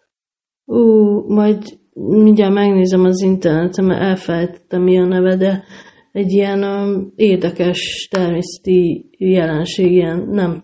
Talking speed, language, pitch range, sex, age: 120 wpm, Hungarian, 175-195 Hz, female, 30-49